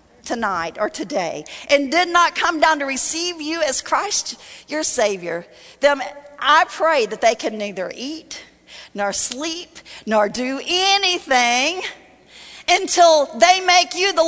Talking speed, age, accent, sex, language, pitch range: 140 wpm, 40-59, American, female, English, 250-360 Hz